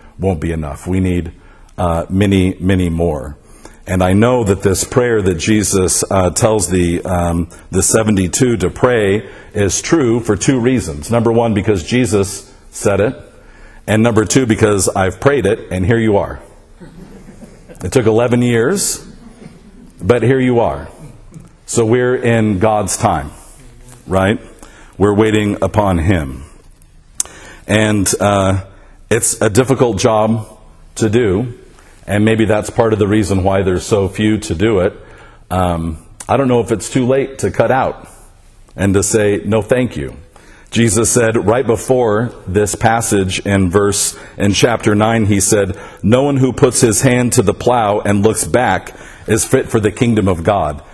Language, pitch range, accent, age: English, 95-115 Hz, American, 50-69